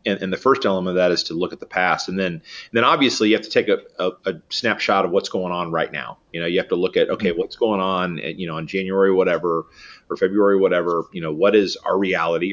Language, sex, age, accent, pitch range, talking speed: English, male, 30-49, American, 90-110 Hz, 280 wpm